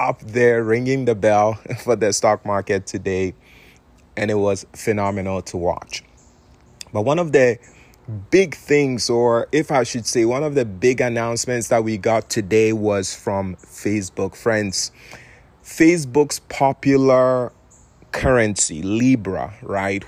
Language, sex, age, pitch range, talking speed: English, male, 30-49, 100-125 Hz, 135 wpm